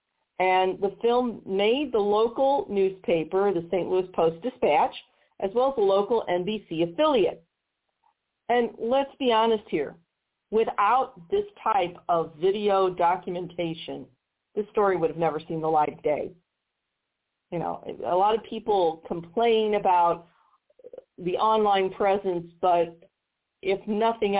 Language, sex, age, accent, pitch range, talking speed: English, female, 40-59, American, 180-250 Hz, 130 wpm